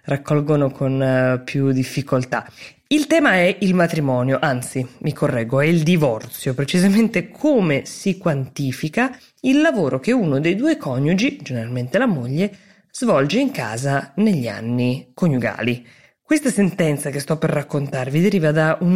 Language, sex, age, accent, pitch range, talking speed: Italian, female, 20-39, native, 135-180 Hz, 140 wpm